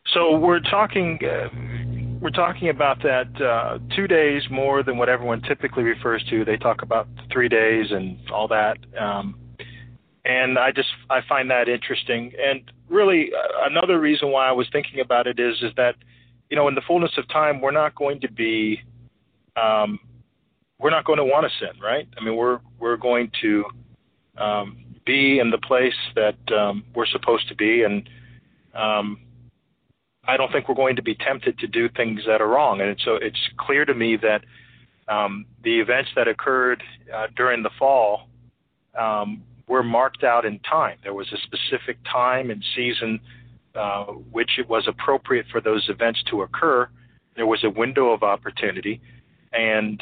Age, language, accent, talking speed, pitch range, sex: 40-59, English, American, 180 wpm, 110-130 Hz, male